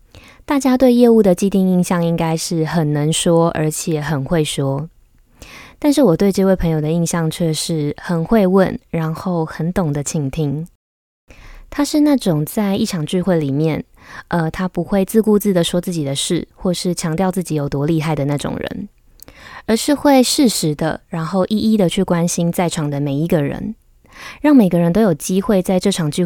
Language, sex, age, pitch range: Chinese, female, 20-39, 155-195 Hz